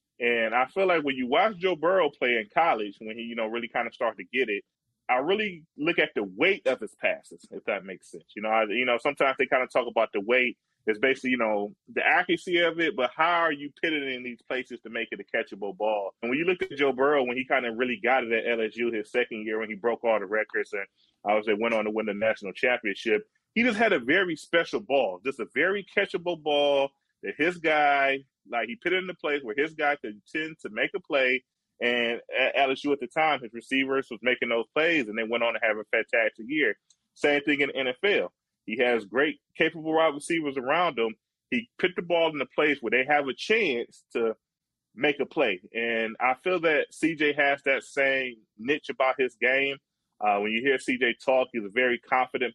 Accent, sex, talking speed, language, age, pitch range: American, male, 235 wpm, English, 20-39, 115-165 Hz